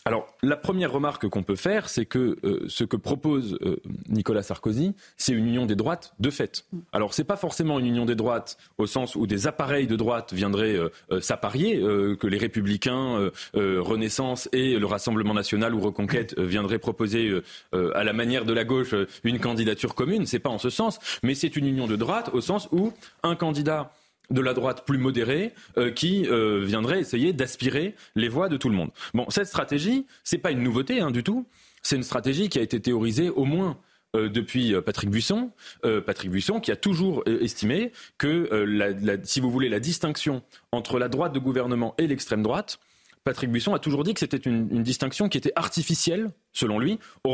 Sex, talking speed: male, 210 wpm